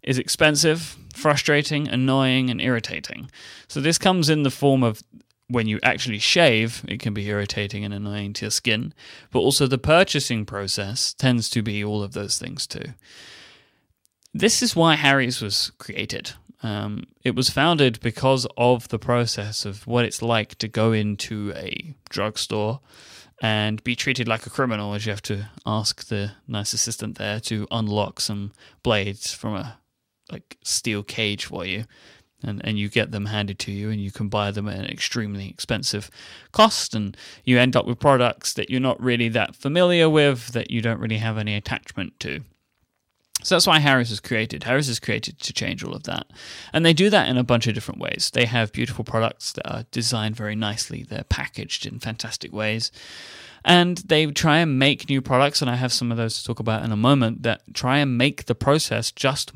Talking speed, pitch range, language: 190 wpm, 105-135 Hz, English